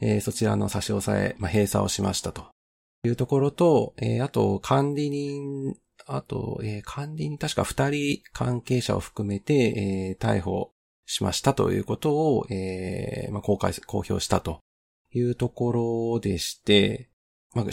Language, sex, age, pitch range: Japanese, male, 40-59, 100-135 Hz